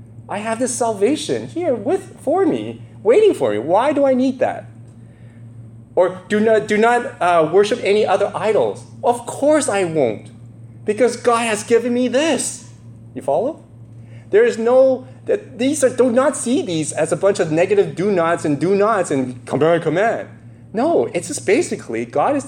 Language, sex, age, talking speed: English, male, 30-49, 180 wpm